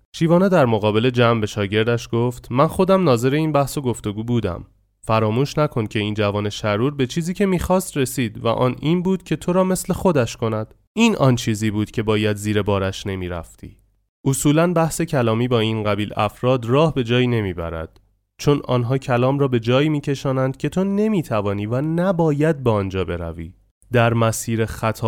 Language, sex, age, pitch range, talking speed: Persian, male, 30-49, 100-130 Hz, 175 wpm